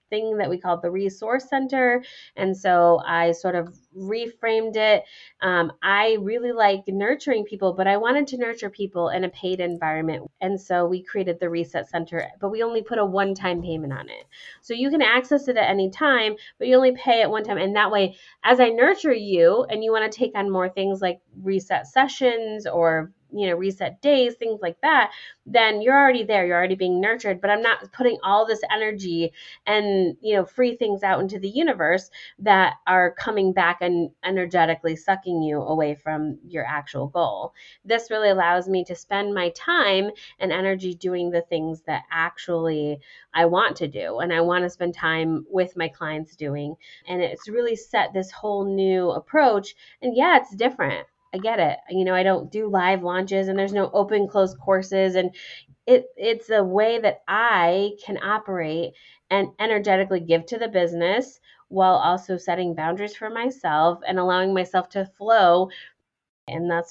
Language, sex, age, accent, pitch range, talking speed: English, female, 20-39, American, 175-220 Hz, 185 wpm